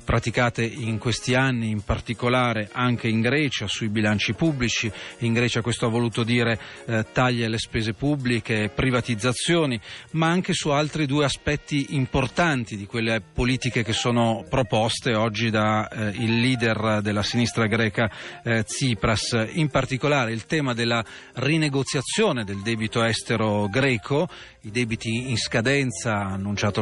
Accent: native